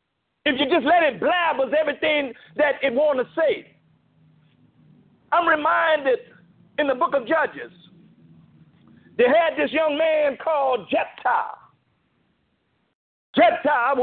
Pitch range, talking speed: 260-325 Hz, 120 wpm